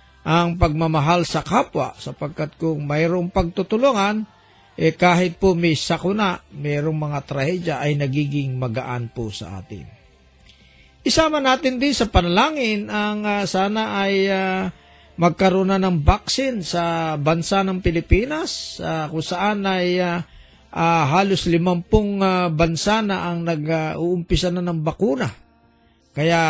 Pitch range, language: 150-195 Hz, Filipino